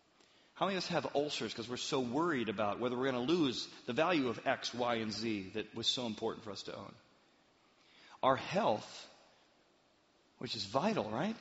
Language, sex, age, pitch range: English, male, 40-59, 120-170 Hz